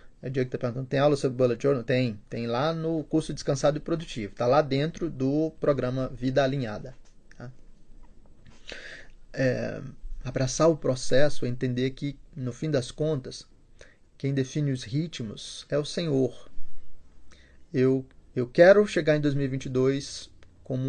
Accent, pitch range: Brazilian, 115-145 Hz